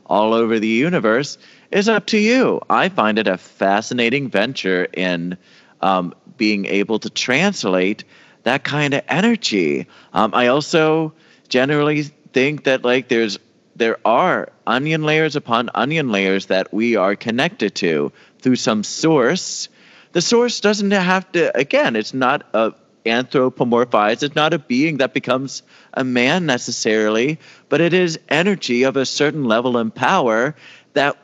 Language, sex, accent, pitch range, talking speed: English, male, American, 110-155 Hz, 150 wpm